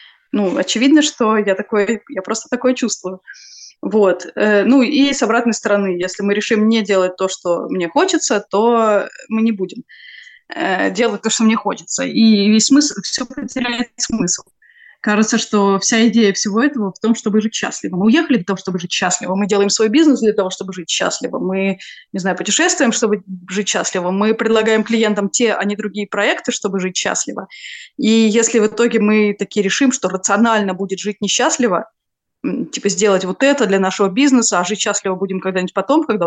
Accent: native